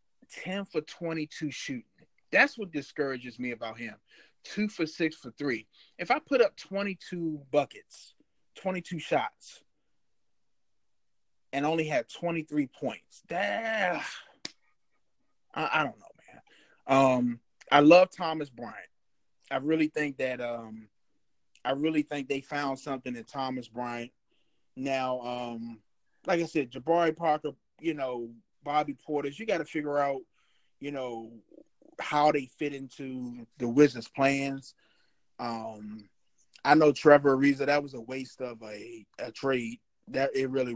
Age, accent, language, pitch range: 30-49, American, English, 120-155 Hz